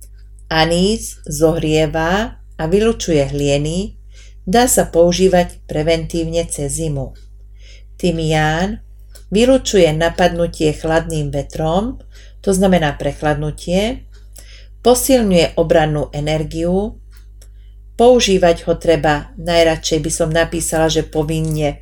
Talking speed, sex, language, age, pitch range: 90 wpm, female, Slovak, 40-59, 135-185 Hz